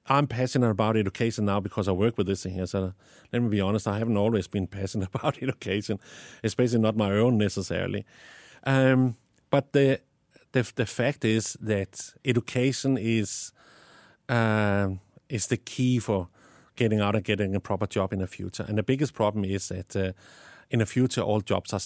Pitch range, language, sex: 100-125 Hz, English, male